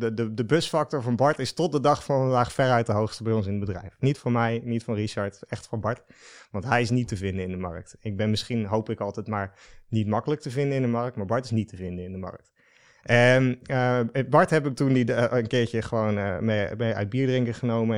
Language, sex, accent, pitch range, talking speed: Dutch, male, Dutch, 105-125 Hz, 265 wpm